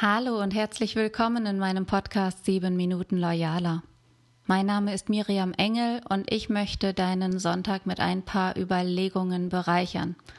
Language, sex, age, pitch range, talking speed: German, female, 30-49, 175-210 Hz, 145 wpm